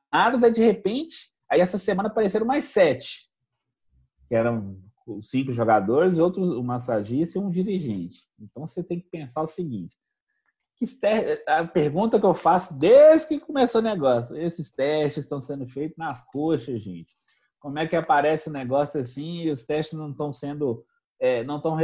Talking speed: 160 wpm